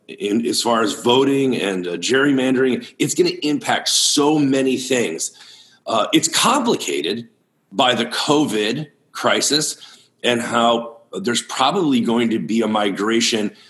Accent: American